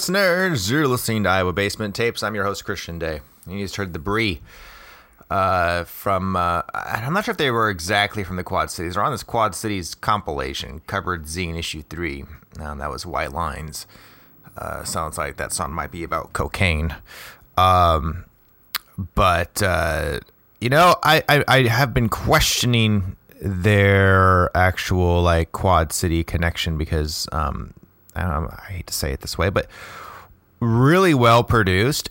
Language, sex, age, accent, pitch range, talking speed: English, male, 30-49, American, 85-110 Hz, 165 wpm